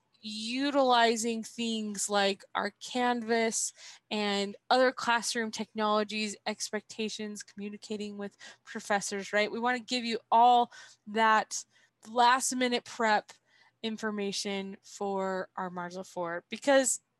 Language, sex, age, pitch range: English, female, 20-39, 205-240 Hz